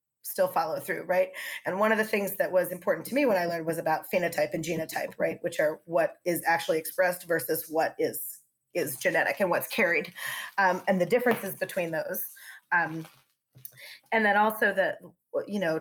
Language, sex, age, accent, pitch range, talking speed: English, female, 30-49, American, 155-200 Hz, 190 wpm